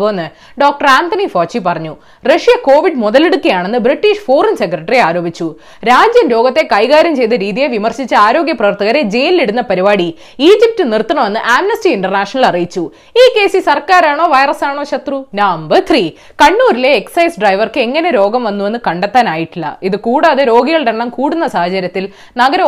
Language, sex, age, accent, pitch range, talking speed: Malayalam, female, 20-39, native, 210-335 Hz, 95 wpm